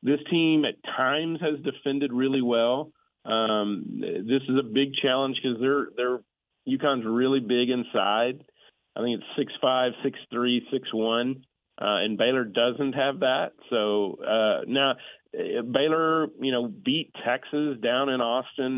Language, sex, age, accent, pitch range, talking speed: English, male, 40-59, American, 105-135 Hz, 155 wpm